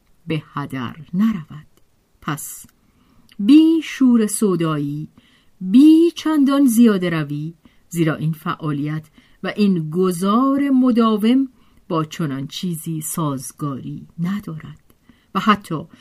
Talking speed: 95 wpm